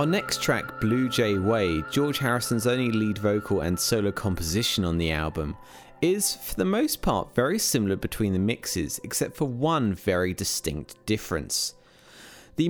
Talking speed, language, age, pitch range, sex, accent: 160 wpm, English, 30-49, 90-130 Hz, male, British